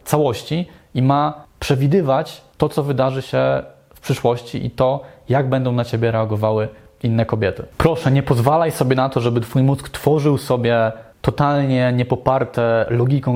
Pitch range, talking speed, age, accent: 115-140 Hz, 150 wpm, 20-39, native